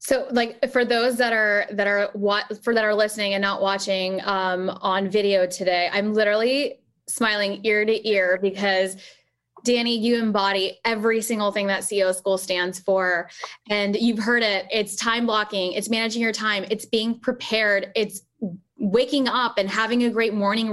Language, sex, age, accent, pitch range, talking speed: English, female, 10-29, American, 190-225 Hz, 175 wpm